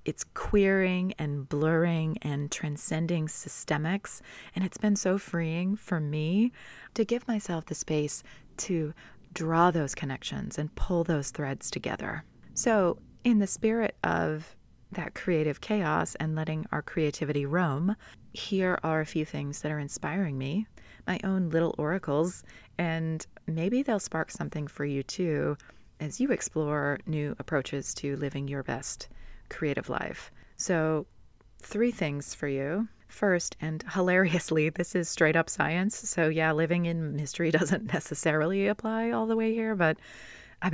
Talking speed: 145 wpm